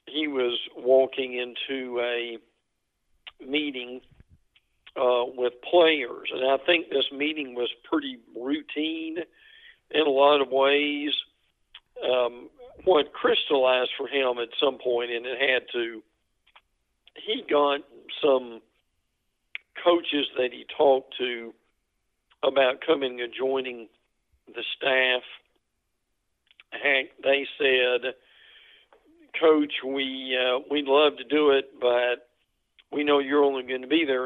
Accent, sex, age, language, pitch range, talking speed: American, male, 50-69, English, 125-155 Hz, 115 wpm